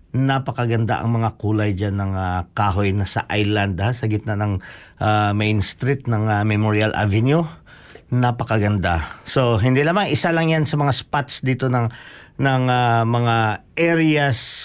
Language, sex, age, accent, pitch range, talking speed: Filipino, male, 50-69, native, 110-140 Hz, 150 wpm